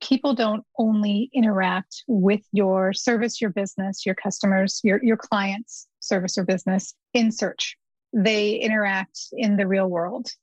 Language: English